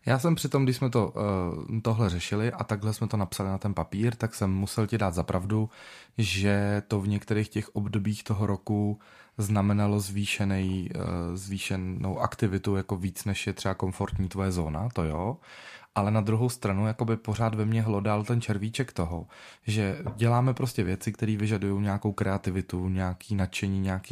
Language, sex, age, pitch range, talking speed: Czech, male, 20-39, 100-110 Hz, 165 wpm